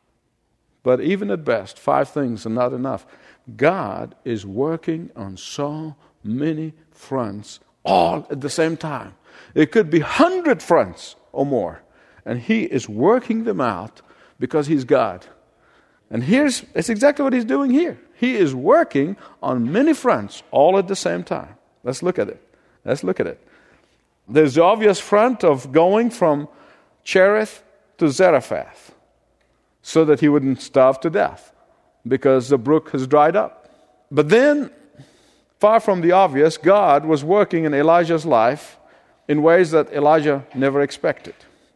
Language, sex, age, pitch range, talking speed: English, male, 50-69, 140-195 Hz, 150 wpm